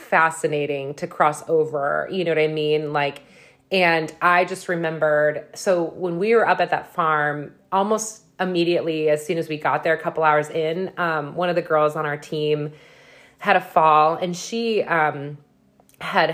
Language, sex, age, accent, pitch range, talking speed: English, female, 30-49, American, 150-175 Hz, 180 wpm